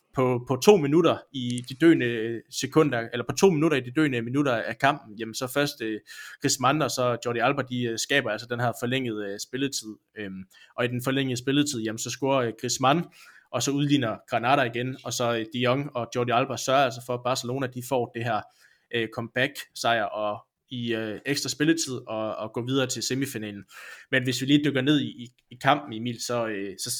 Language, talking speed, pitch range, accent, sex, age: Danish, 215 wpm, 115-135 Hz, native, male, 20-39